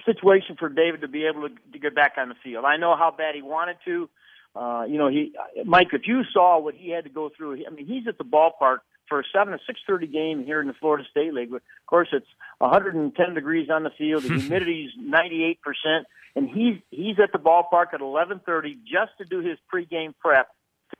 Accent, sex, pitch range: American, male, 150-200 Hz